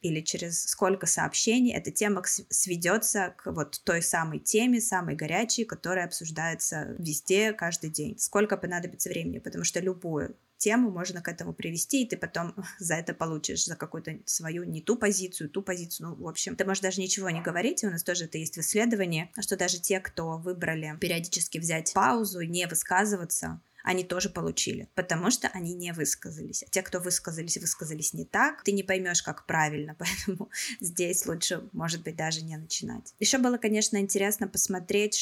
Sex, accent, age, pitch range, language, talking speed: female, native, 20-39, 160-200 Hz, Russian, 175 wpm